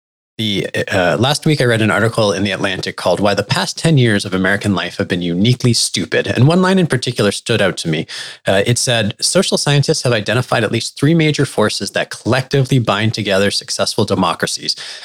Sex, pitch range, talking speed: male, 100-130 Hz, 200 wpm